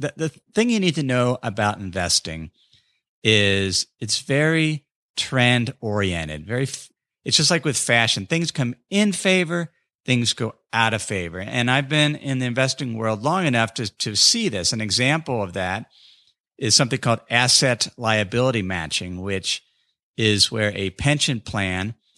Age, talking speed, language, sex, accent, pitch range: 50-69, 150 wpm, English, male, American, 100-125 Hz